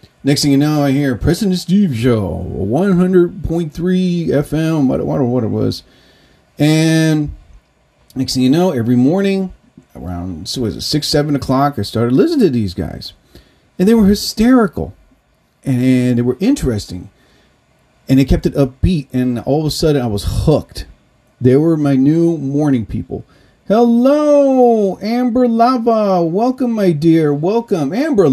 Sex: male